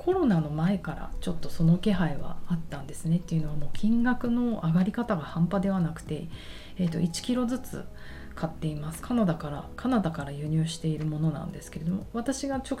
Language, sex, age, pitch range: Japanese, female, 30-49, 155-215 Hz